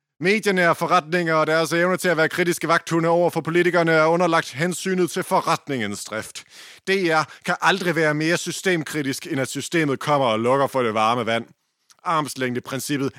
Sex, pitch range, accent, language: male, 125-160 Hz, native, Danish